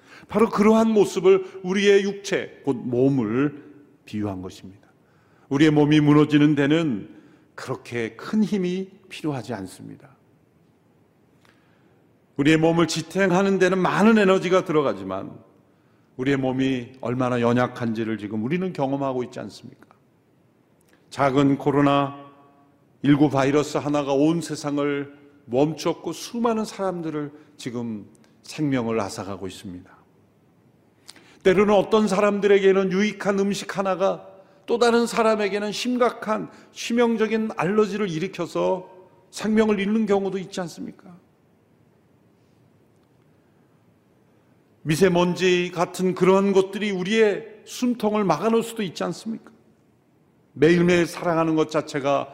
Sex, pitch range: male, 135-195 Hz